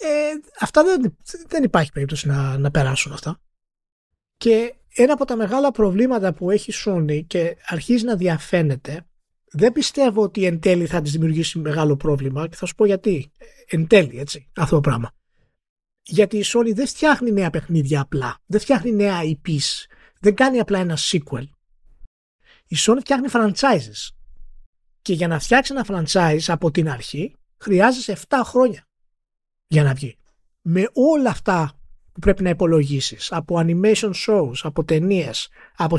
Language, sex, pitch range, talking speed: Greek, male, 150-220 Hz, 160 wpm